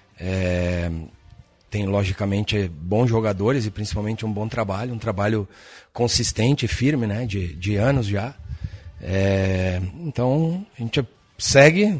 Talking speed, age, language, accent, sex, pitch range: 110 wpm, 40-59, Portuguese, Brazilian, male, 105-125 Hz